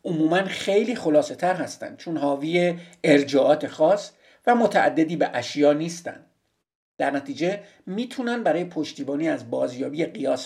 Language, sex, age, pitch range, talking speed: Persian, male, 50-69, 150-215 Hz, 120 wpm